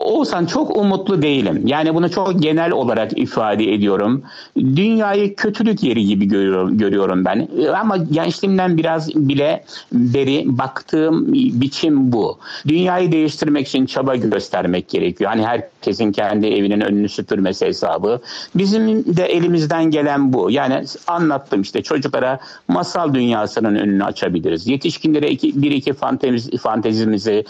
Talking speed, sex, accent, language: 120 wpm, male, native, Turkish